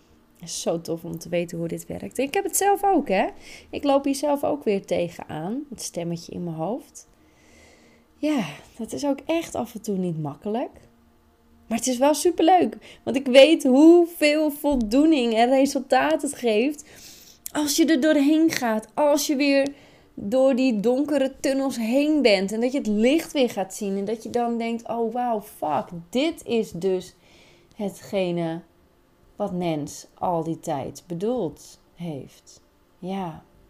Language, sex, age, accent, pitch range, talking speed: Dutch, female, 20-39, Dutch, 170-265 Hz, 165 wpm